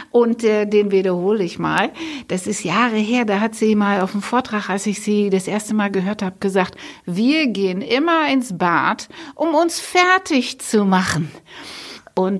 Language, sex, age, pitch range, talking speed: German, female, 60-79, 185-240 Hz, 180 wpm